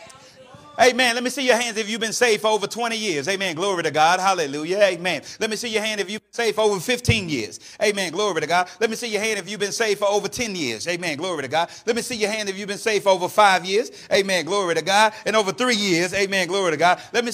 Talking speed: 275 wpm